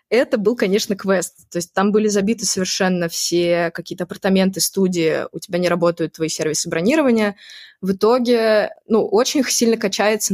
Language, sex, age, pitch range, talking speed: Russian, female, 20-39, 185-225 Hz, 155 wpm